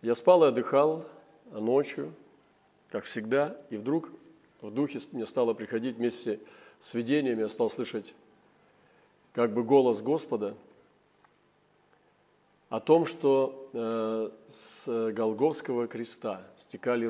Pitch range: 120-150 Hz